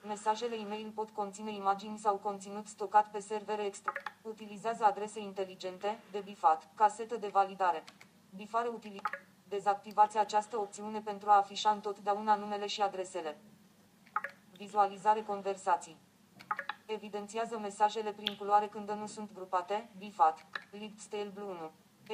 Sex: female